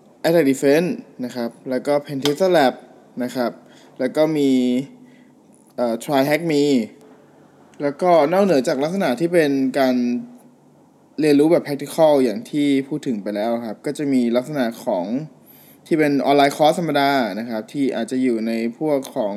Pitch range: 125-155 Hz